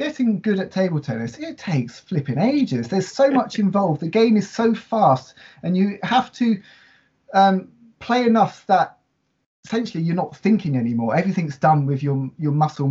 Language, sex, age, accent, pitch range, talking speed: English, male, 30-49, British, 130-190 Hz, 170 wpm